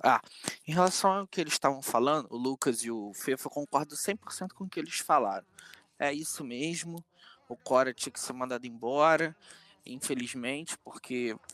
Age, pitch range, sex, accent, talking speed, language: 20-39, 140-205 Hz, male, Brazilian, 165 wpm, Portuguese